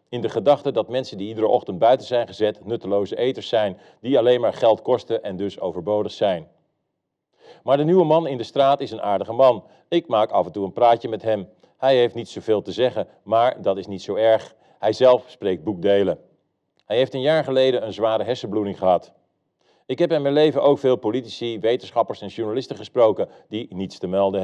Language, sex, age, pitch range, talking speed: Dutch, male, 40-59, 105-135 Hz, 205 wpm